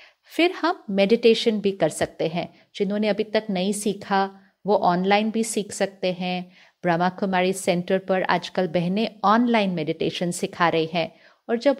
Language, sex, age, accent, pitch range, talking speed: Hindi, female, 50-69, native, 180-230 Hz, 160 wpm